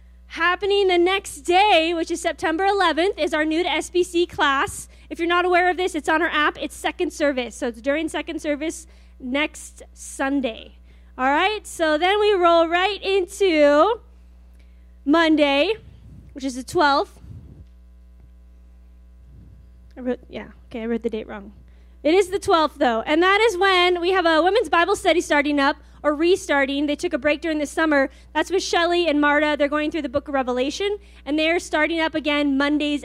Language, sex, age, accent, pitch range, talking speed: English, female, 10-29, American, 260-355 Hz, 180 wpm